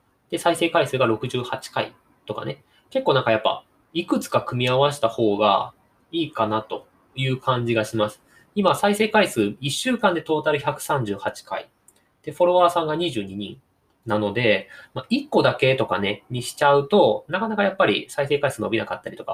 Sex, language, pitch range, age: male, Japanese, 120-195 Hz, 20-39